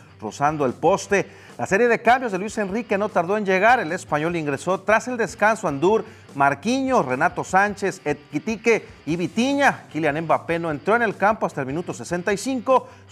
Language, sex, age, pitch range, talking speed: English, male, 40-59, 145-200 Hz, 175 wpm